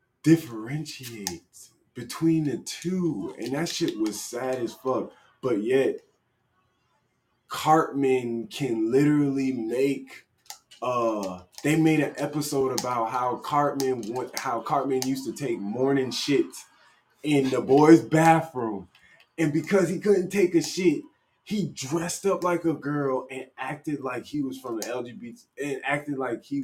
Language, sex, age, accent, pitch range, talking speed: English, male, 20-39, American, 115-180 Hz, 140 wpm